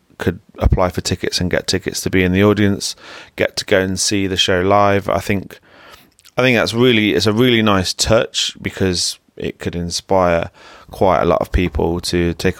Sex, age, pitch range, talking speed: male, 20-39, 90-95 Hz, 200 wpm